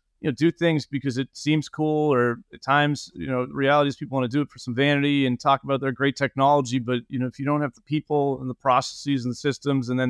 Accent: American